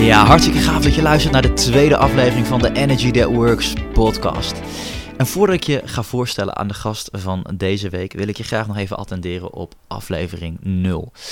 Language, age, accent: Dutch, 20-39, Dutch